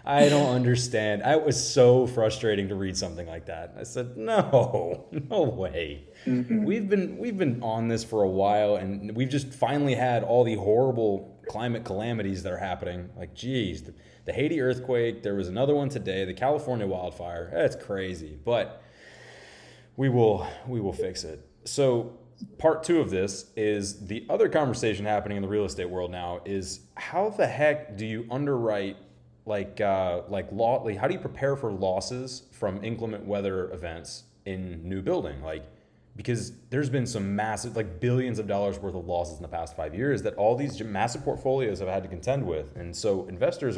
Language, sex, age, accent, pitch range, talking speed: English, male, 20-39, American, 95-125 Hz, 180 wpm